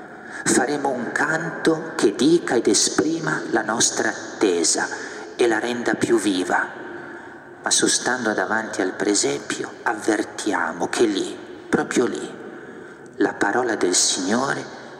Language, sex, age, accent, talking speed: Italian, male, 50-69, native, 115 wpm